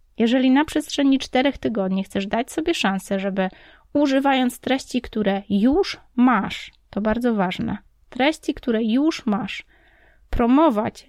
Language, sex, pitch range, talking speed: Polish, female, 205-255 Hz, 125 wpm